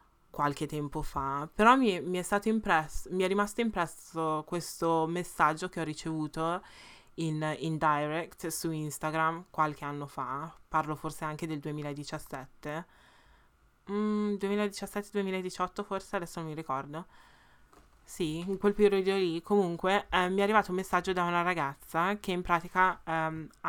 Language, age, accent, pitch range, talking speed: Italian, 20-39, native, 150-180 Hz, 145 wpm